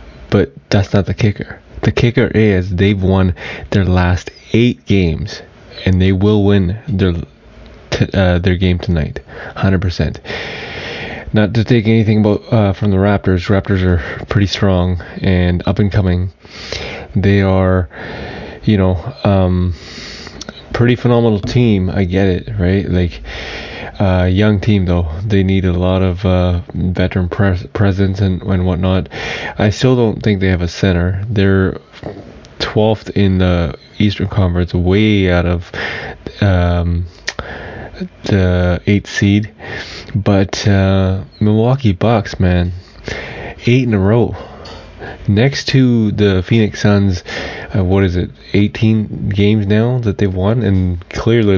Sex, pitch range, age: male, 90-110 Hz, 20-39